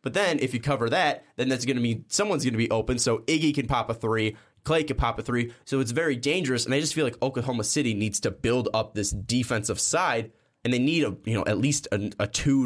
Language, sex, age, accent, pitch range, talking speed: English, male, 10-29, American, 105-130 Hz, 265 wpm